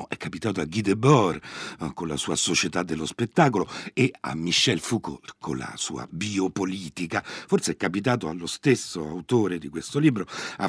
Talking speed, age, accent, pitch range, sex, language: 175 wpm, 60-79, native, 80-110 Hz, male, Italian